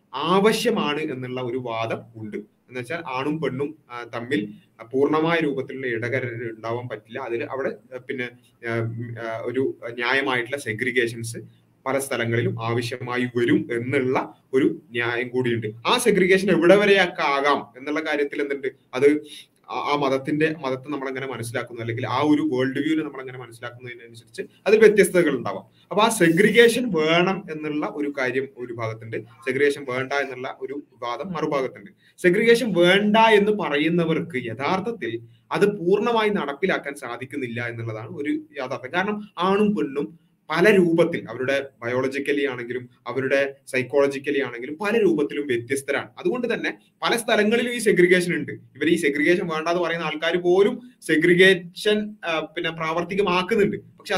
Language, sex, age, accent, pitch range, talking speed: Malayalam, male, 30-49, native, 125-180 Hz, 125 wpm